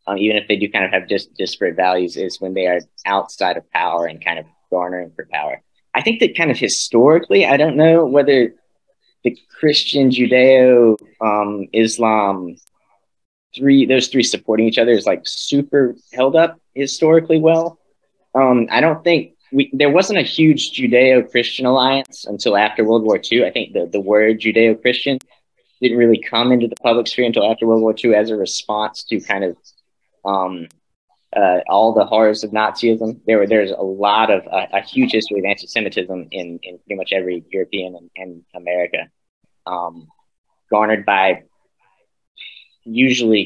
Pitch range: 95-125 Hz